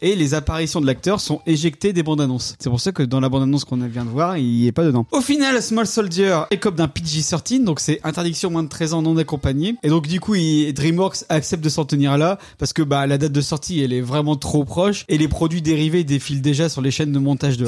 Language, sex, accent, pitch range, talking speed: French, male, French, 145-185 Hz, 265 wpm